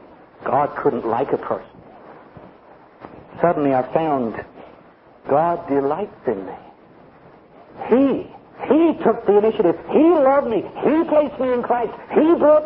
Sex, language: male, English